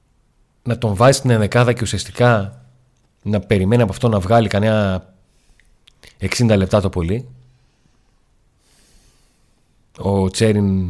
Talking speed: 110 wpm